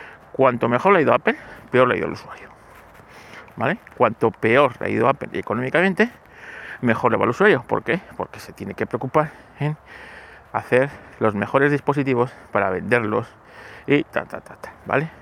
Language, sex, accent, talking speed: Spanish, male, Spanish, 180 wpm